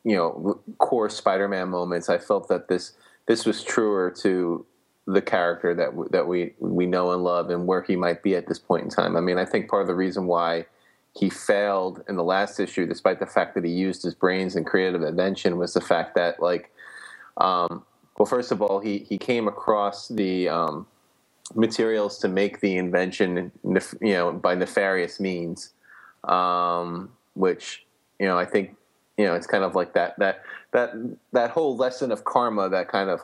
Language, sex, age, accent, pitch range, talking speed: English, male, 20-39, American, 90-105 Hz, 200 wpm